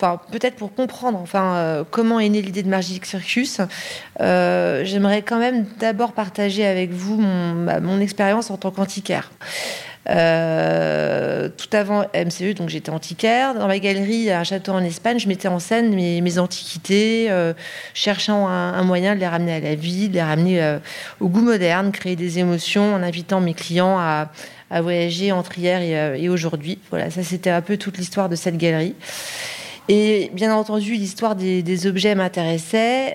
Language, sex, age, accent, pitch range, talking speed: French, female, 30-49, French, 180-215 Hz, 185 wpm